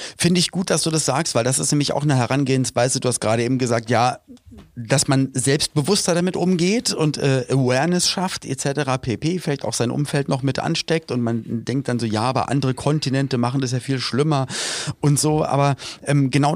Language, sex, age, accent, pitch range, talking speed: German, male, 30-49, German, 130-160 Hz, 205 wpm